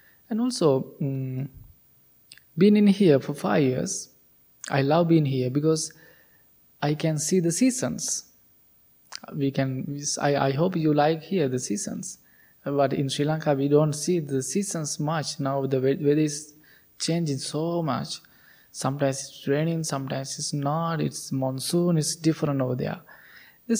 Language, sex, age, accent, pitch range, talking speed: English, male, 20-39, Indian, 140-175 Hz, 150 wpm